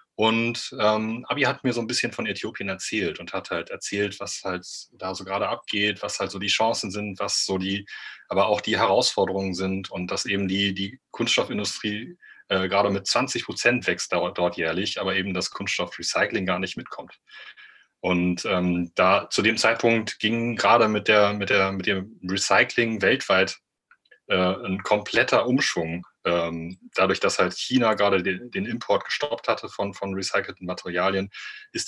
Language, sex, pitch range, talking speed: German, male, 95-110 Hz, 165 wpm